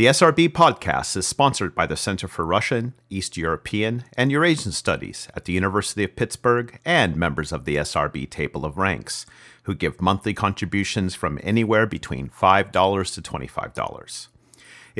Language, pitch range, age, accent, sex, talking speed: English, 95-125 Hz, 40-59, American, male, 150 wpm